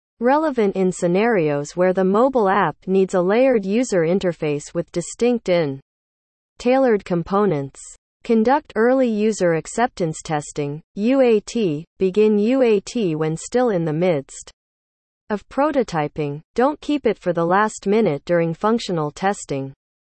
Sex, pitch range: female, 160-225 Hz